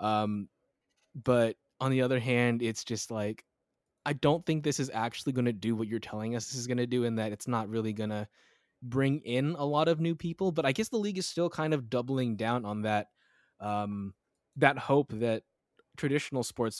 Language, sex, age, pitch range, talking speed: English, male, 20-39, 115-140 Hz, 215 wpm